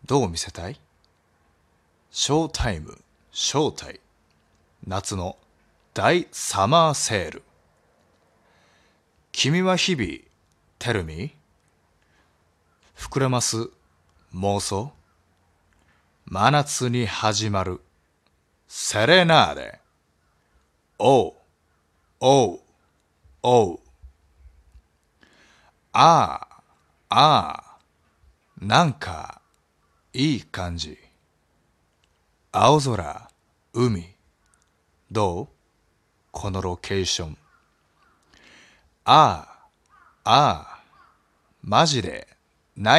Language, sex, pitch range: Japanese, male, 75-110 Hz